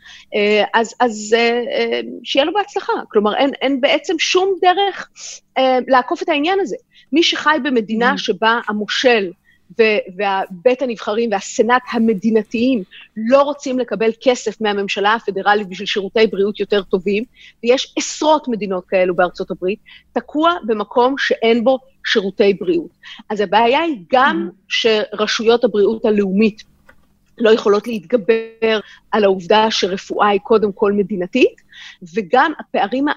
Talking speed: 120 wpm